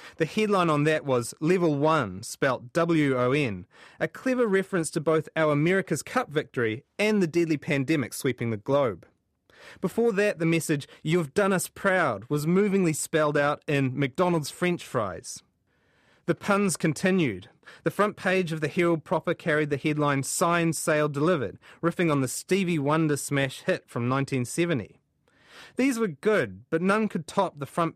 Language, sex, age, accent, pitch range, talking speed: English, male, 30-49, Australian, 135-175 Hz, 160 wpm